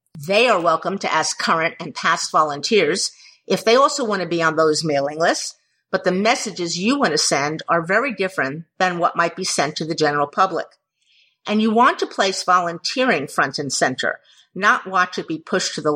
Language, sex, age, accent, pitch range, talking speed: English, female, 50-69, American, 160-215 Hz, 205 wpm